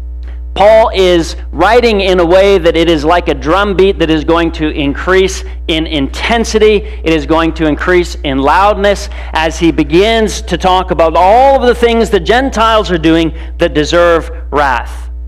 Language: English